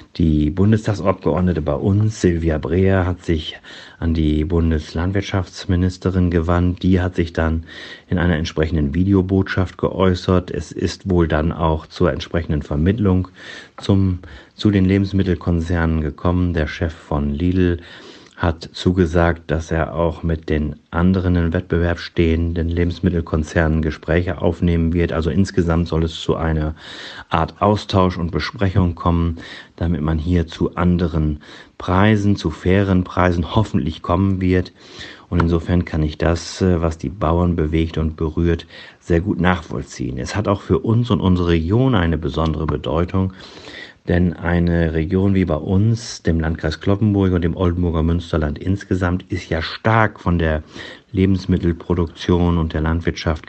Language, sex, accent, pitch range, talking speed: German, male, German, 80-95 Hz, 140 wpm